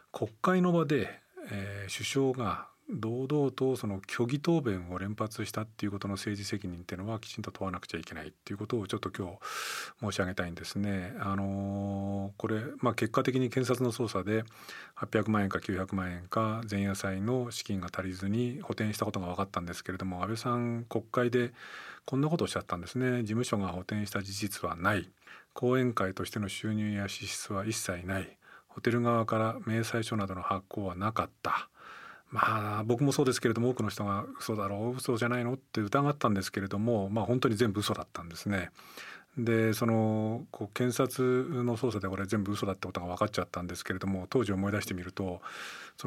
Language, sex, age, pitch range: Japanese, male, 40-59, 95-120 Hz